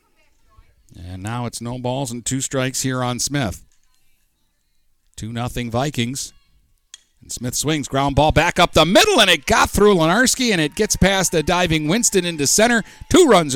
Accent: American